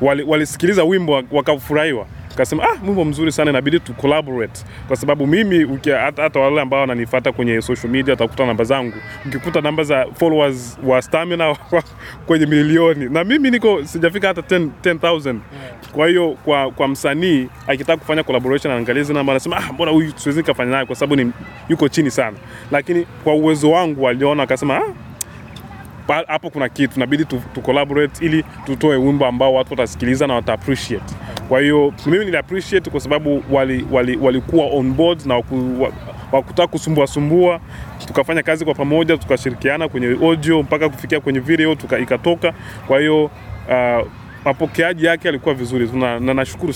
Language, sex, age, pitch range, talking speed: Swahili, male, 20-39, 130-160 Hz, 160 wpm